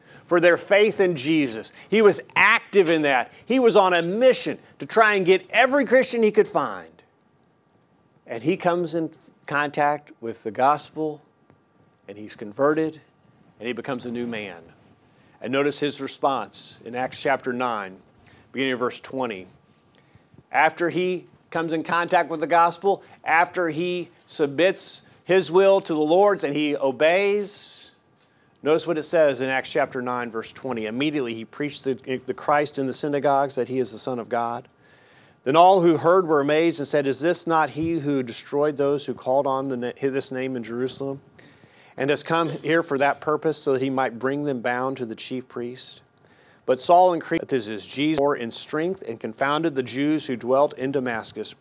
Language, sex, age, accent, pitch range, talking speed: English, male, 40-59, American, 130-165 Hz, 185 wpm